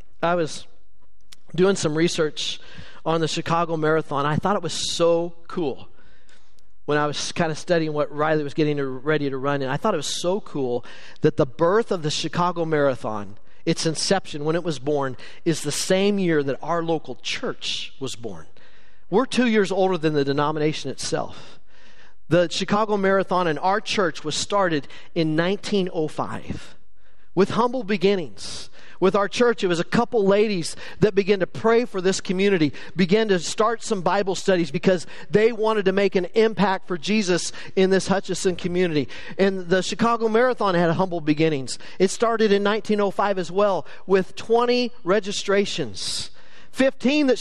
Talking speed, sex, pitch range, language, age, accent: 165 wpm, male, 155-200 Hz, English, 40-59, American